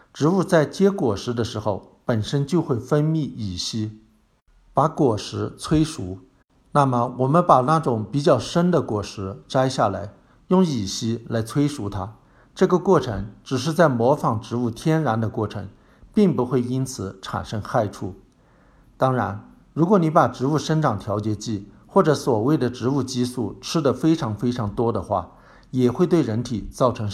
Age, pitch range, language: 60-79, 110-150 Hz, Chinese